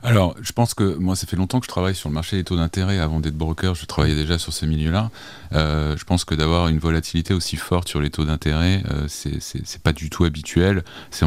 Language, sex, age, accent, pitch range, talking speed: French, male, 30-49, French, 75-90 Hz, 260 wpm